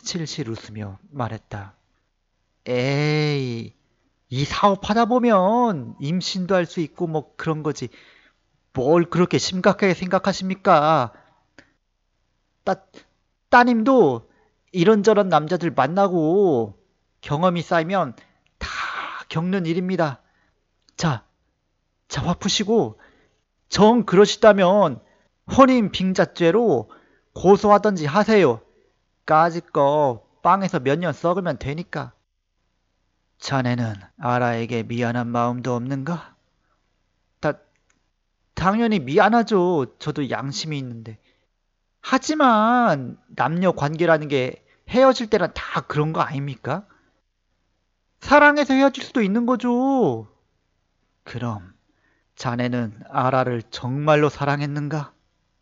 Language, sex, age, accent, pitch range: Korean, male, 40-59, native, 115-190 Hz